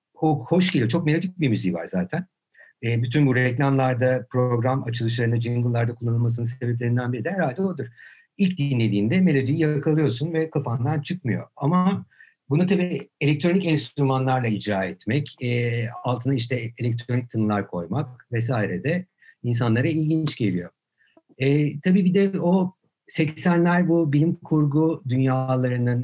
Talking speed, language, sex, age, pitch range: 130 wpm, Turkish, male, 50-69, 115-160 Hz